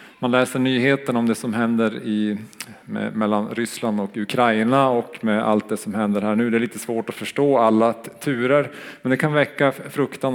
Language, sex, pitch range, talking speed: Swedish, male, 105-130 Hz, 205 wpm